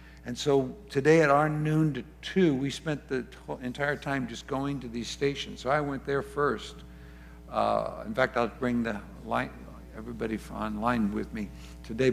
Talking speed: 165 wpm